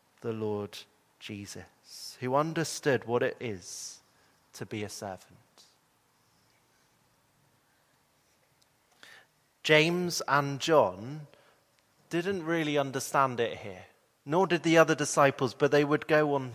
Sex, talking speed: male, 110 wpm